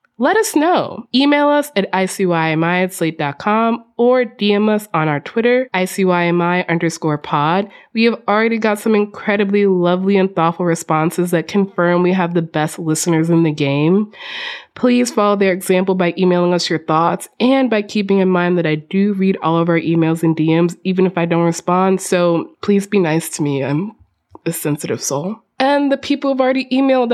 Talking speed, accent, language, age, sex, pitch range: 180 wpm, American, English, 20-39, female, 170-230 Hz